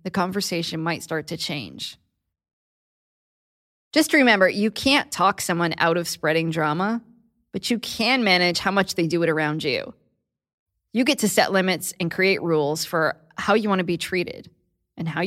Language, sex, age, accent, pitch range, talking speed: English, female, 20-39, American, 165-210 Hz, 175 wpm